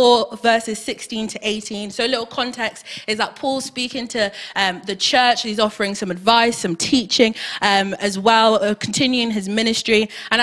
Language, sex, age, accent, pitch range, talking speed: English, female, 20-39, British, 190-235 Hz, 185 wpm